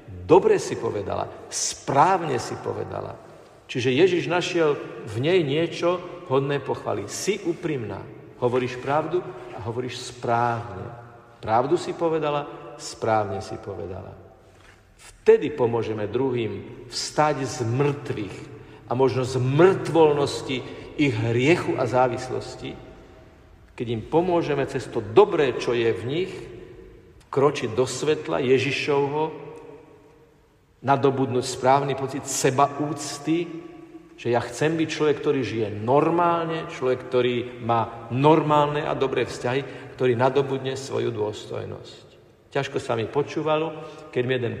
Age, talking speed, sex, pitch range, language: 50-69, 115 wpm, male, 120-150 Hz, Slovak